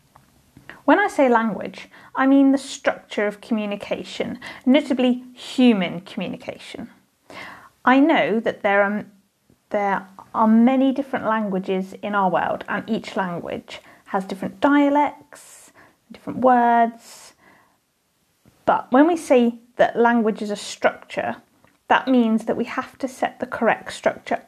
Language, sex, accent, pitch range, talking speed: English, female, British, 210-255 Hz, 125 wpm